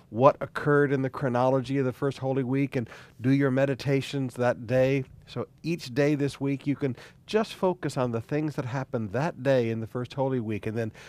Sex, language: male, English